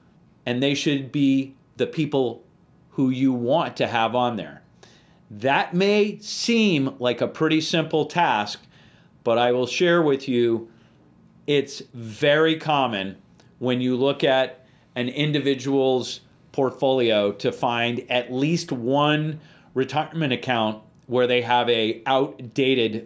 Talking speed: 130 wpm